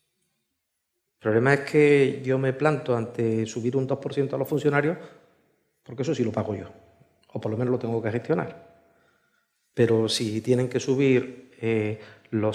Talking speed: 165 wpm